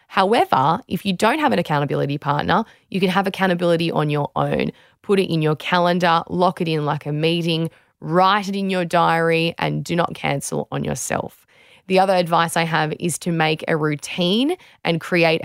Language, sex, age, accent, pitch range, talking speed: English, female, 20-39, Australian, 160-200 Hz, 190 wpm